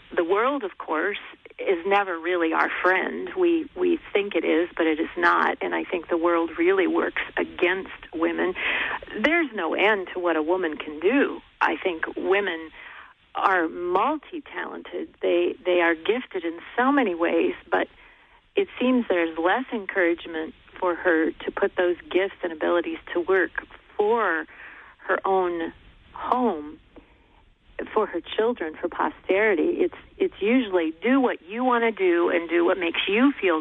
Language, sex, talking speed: English, female, 160 wpm